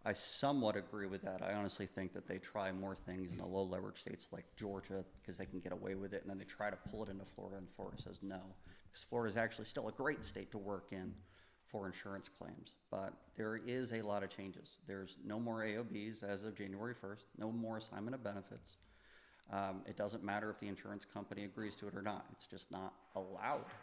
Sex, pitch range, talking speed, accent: male, 100-115 Hz, 225 wpm, American